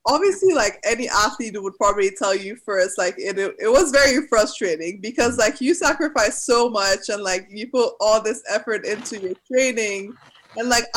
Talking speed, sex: 180 wpm, female